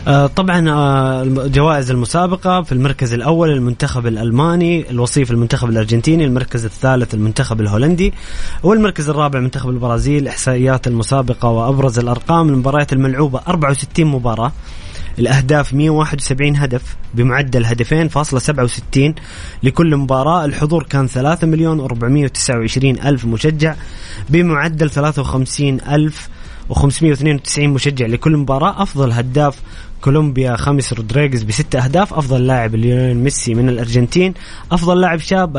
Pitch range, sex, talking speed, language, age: 115-145 Hz, male, 110 wpm, Arabic, 20-39